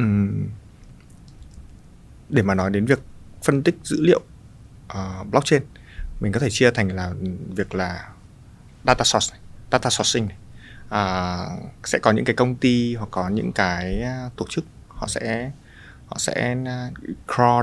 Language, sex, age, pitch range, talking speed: Vietnamese, male, 20-39, 95-125 Hz, 145 wpm